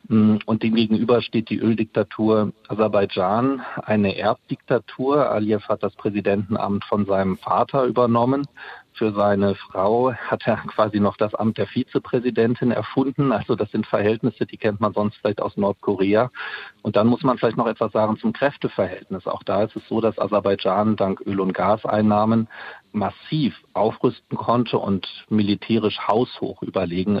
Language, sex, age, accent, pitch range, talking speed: German, male, 40-59, German, 100-110 Hz, 150 wpm